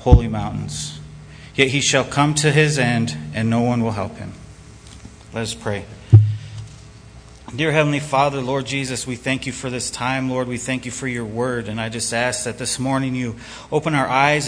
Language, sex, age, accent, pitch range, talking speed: English, male, 30-49, American, 115-130 Hz, 195 wpm